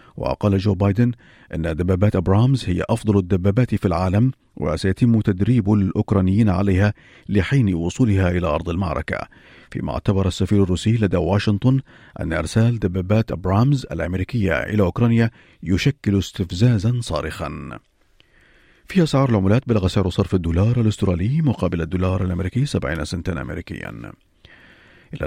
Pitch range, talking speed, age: 90-115 Hz, 120 wpm, 50-69